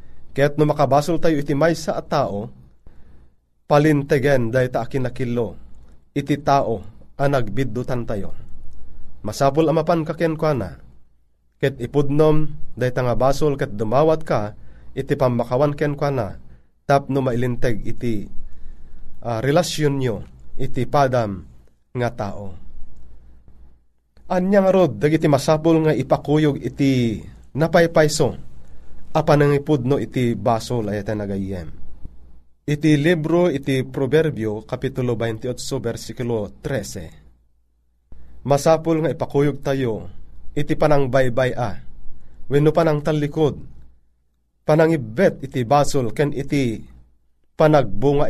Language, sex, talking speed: Filipino, male, 105 wpm